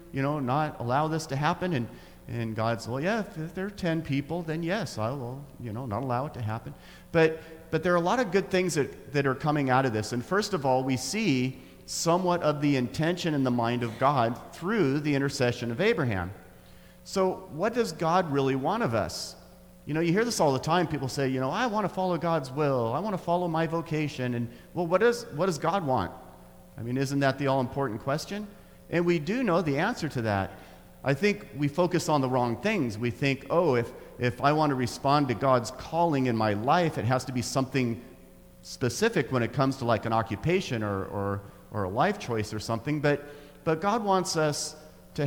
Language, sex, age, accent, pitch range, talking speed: English, male, 40-59, American, 120-170 Hz, 225 wpm